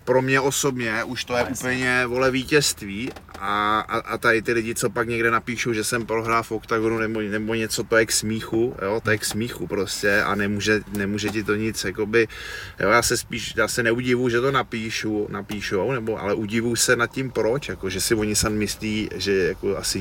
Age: 20-39